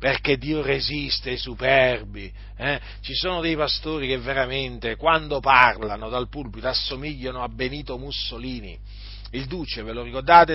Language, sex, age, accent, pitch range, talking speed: Italian, male, 40-59, native, 120-180 Hz, 140 wpm